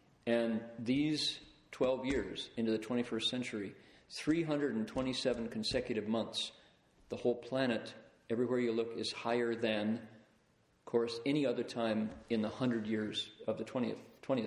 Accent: American